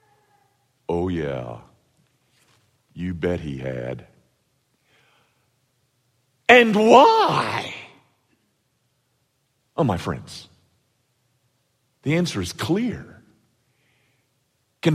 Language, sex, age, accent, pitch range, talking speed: English, male, 50-69, American, 110-140 Hz, 65 wpm